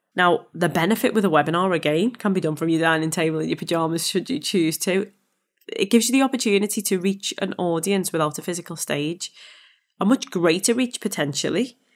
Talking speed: 195 wpm